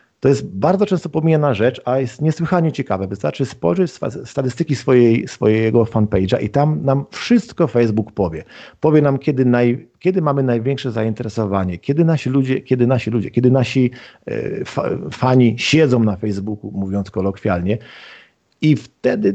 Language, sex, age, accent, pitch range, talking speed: Polish, male, 40-59, native, 110-145 Hz, 145 wpm